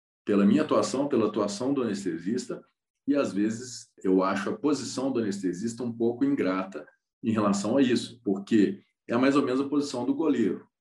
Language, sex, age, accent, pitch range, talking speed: Portuguese, male, 40-59, Brazilian, 95-135 Hz, 180 wpm